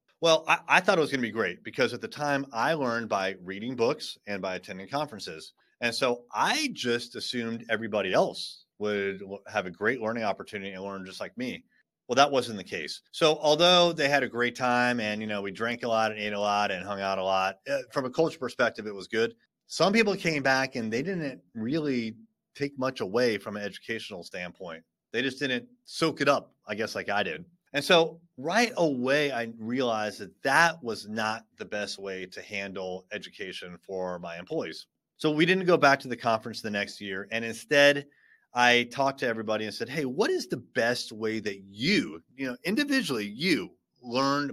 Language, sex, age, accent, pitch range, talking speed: English, male, 30-49, American, 105-145 Hz, 205 wpm